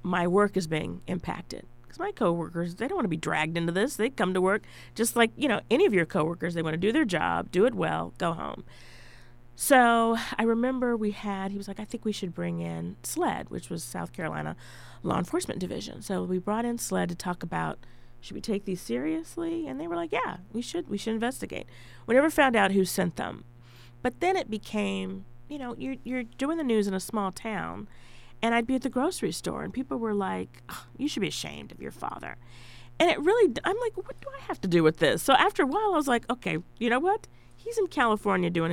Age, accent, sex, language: 40-59, American, female, English